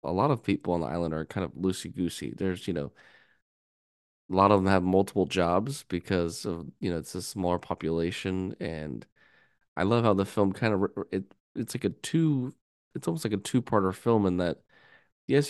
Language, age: English, 20-39